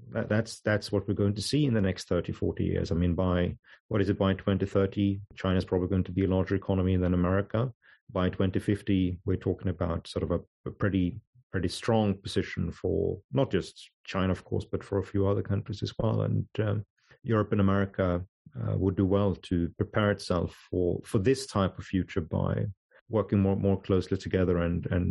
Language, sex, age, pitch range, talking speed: English, male, 40-59, 95-115 Hz, 200 wpm